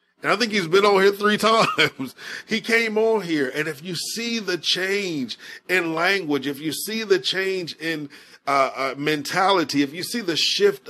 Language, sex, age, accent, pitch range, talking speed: English, male, 40-59, American, 130-190 Hz, 195 wpm